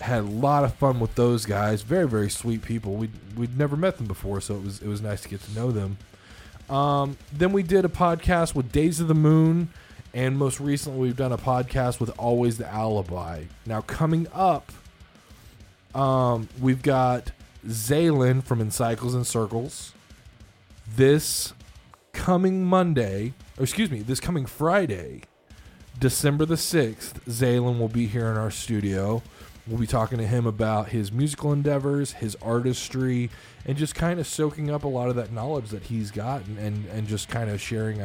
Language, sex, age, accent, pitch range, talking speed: English, male, 20-39, American, 105-135 Hz, 175 wpm